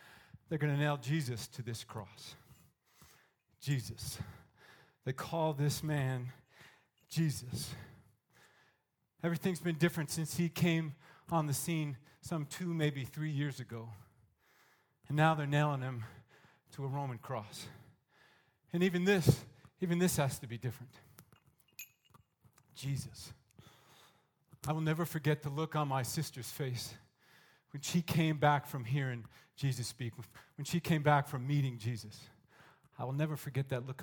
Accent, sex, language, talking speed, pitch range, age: American, male, English, 140 wpm, 130-160 Hz, 40-59